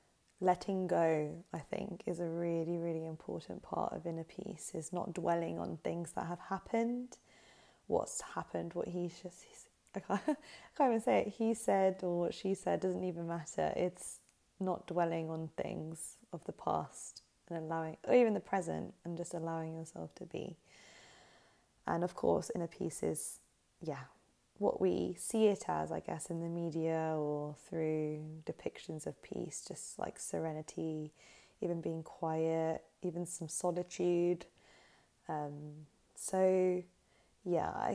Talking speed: 150 wpm